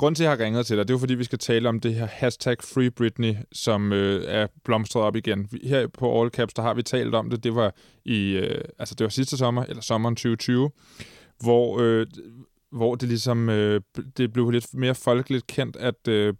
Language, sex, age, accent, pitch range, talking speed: Danish, male, 20-39, native, 105-125 Hz, 230 wpm